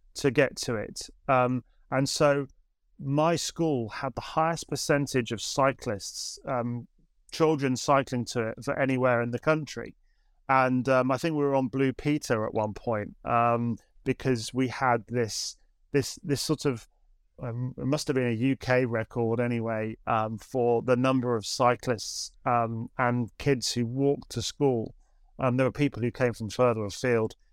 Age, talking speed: 30-49, 170 wpm